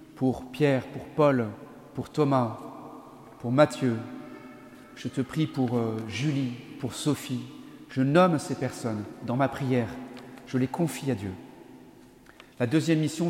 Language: French